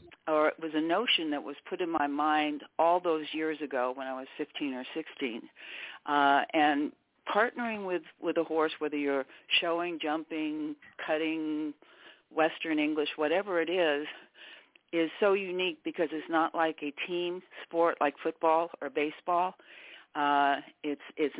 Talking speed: 155 wpm